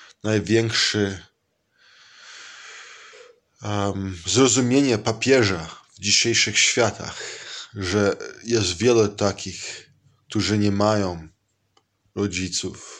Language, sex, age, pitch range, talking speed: Hebrew, male, 20-39, 95-115 Hz, 65 wpm